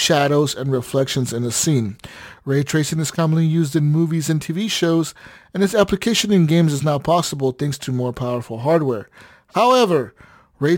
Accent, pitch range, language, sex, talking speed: American, 135-170 Hz, English, male, 175 wpm